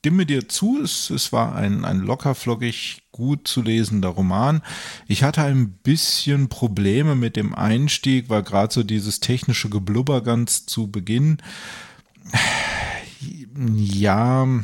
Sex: male